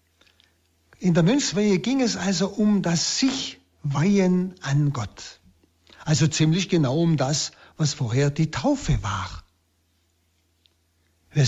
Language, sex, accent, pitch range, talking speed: German, male, German, 115-185 Hz, 115 wpm